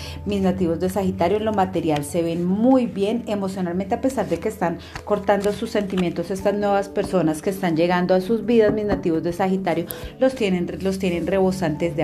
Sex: female